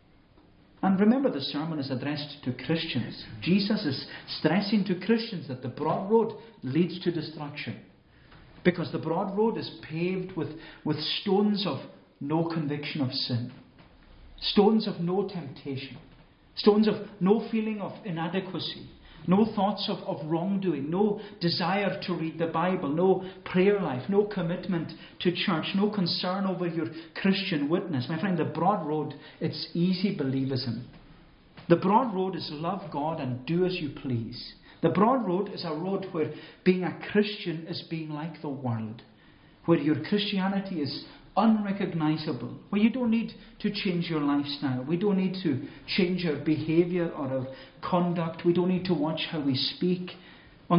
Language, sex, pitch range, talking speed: English, male, 150-190 Hz, 160 wpm